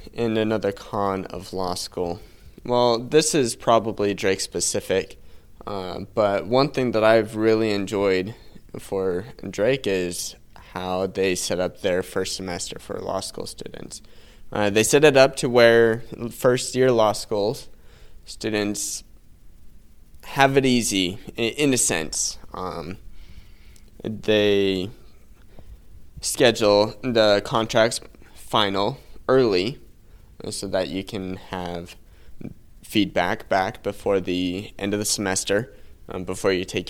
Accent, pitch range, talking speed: American, 90-110 Hz, 120 wpm